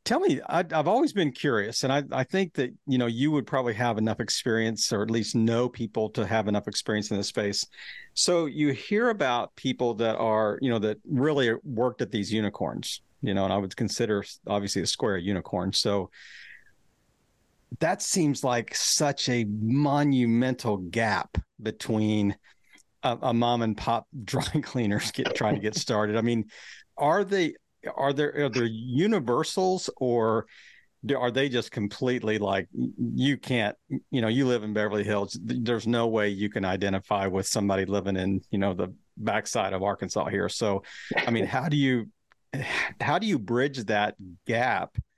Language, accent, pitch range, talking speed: English, American, 105-130 Hz, 175 wpm